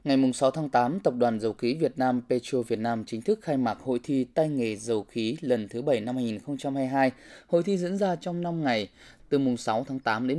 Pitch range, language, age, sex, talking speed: 120-170 Hz, Vietnamese, 20-39, male, 235 wpm